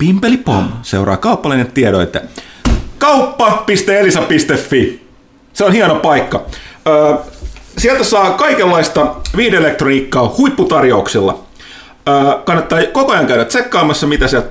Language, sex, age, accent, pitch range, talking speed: Finnish, male, 30-49, native, 140-215 Hz, 90 wpm